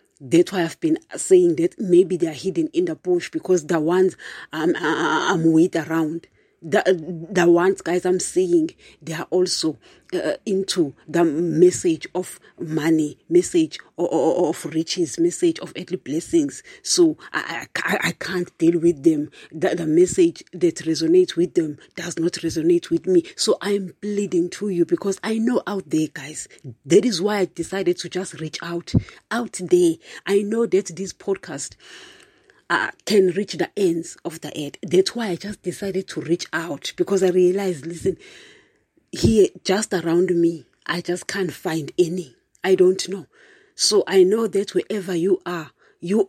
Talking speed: 165 wpm